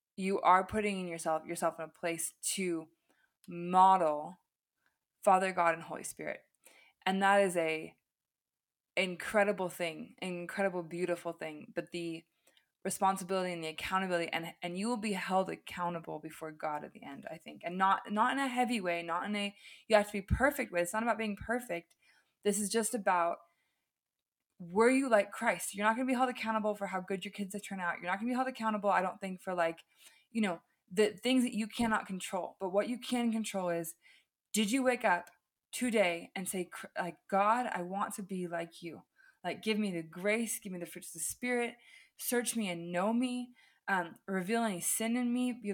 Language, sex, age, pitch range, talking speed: English, female, 20-39, 175-225 Hz, 200 wpm